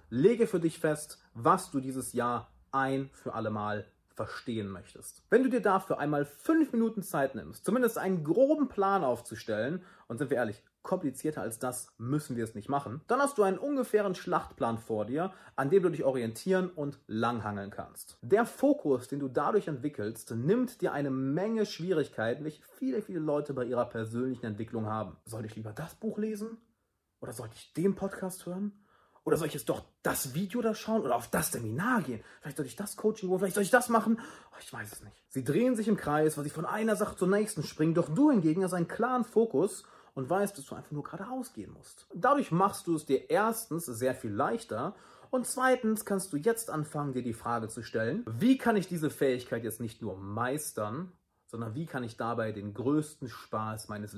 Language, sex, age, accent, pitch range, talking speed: German, male, 30-49, German, 120-200 Hz, 205 wpm